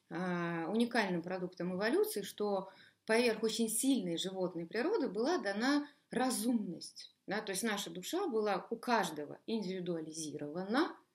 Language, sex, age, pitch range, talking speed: Russian, female, 20-39, 180-250 Hz, 110 wpm